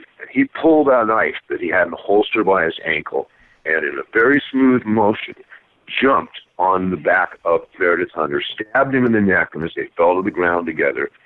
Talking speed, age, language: 210 wpm, 50-69, English